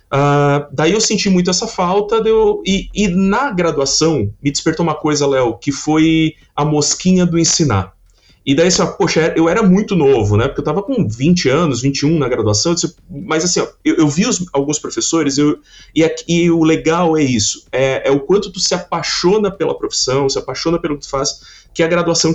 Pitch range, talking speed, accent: 140-185 Hz, 205 wpm, Brazilian